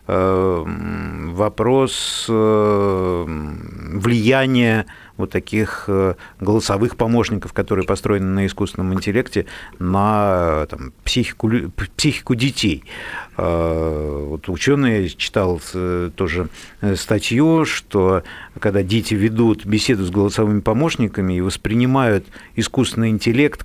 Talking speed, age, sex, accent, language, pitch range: 85 wpm, 50-69, male, native, Russian, 95-120 Hz